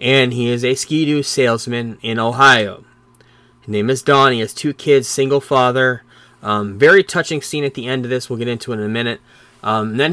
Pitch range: 120-150 Hz